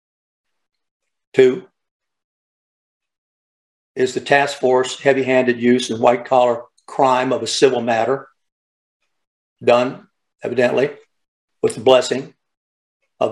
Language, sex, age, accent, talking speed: English, male, 60-79, American, 90 wpm